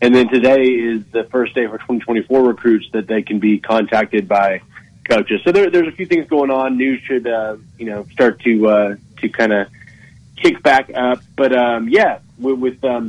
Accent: American